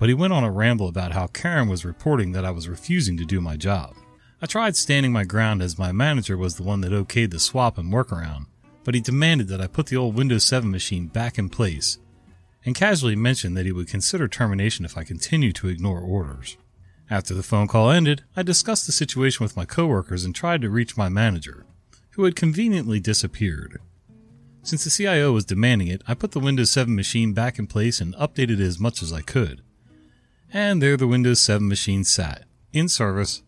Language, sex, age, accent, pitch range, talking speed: English, male, 30-49, American, 95-130 Hz, 215 wpm